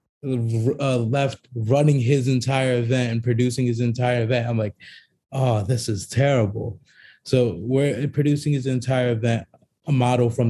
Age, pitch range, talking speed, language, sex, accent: 20-39, 110-130 Hz, 150 wpm, English, male, American